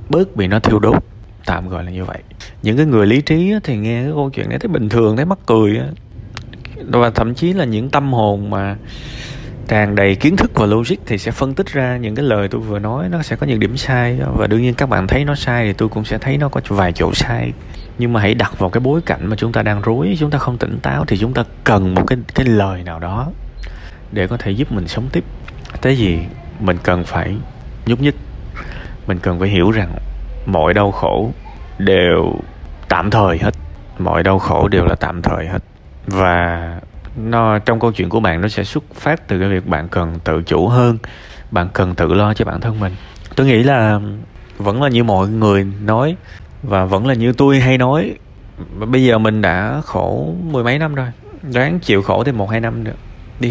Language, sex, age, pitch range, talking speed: Vietnamese, male, 20-39, 95-125 Hz, 225 wpm